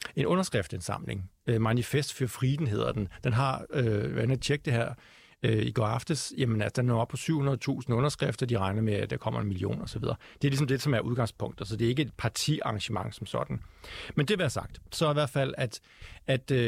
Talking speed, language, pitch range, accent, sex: 225 wpm, Danish, 110-135 Hz, native, male